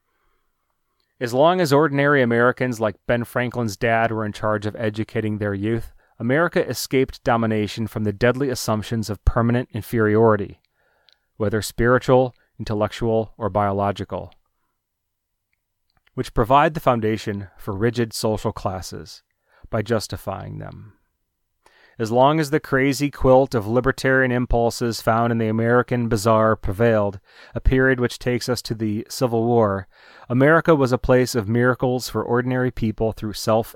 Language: English